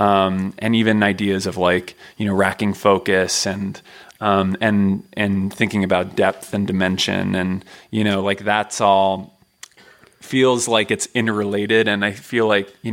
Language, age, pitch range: English, 20-39, 100-115 Hz